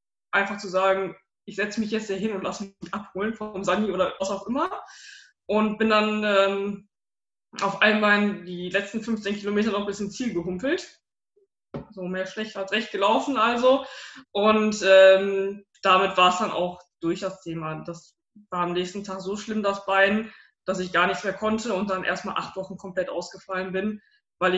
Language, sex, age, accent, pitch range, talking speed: German, female, 20-39, German, 185-215 Hz, 180 wpm